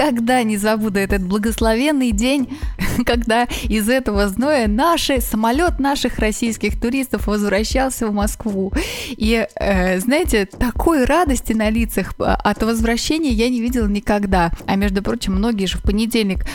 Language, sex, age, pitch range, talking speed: Russian, female, 20-39, 215-270 Hz, 140 wpm